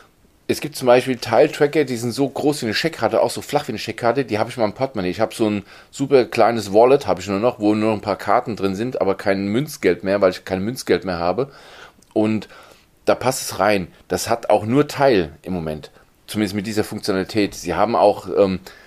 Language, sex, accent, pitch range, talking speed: German, male, German, 95-130 Hz, 230 wpm